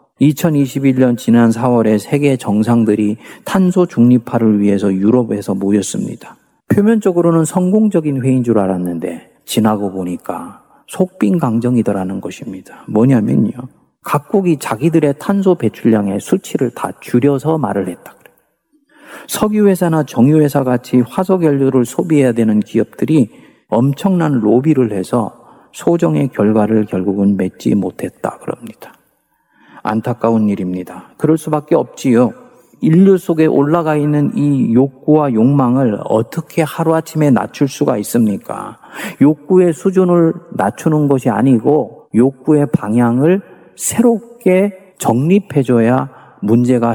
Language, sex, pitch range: Korean, male, 115-170 Hz